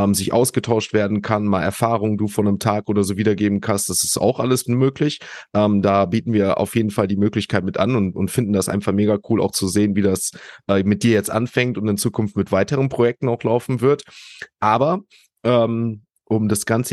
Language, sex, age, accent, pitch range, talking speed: German, male, 30-49, German, 100-115 Hz, 215 wpm